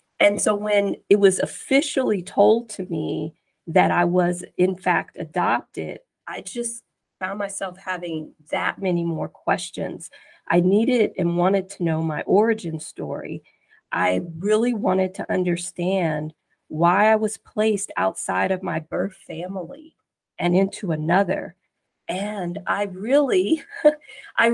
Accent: American